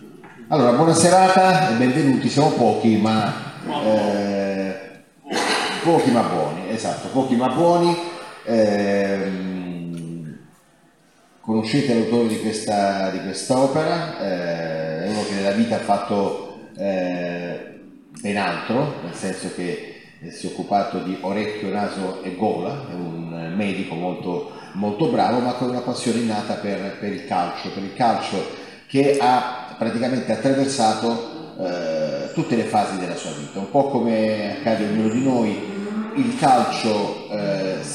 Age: 40-59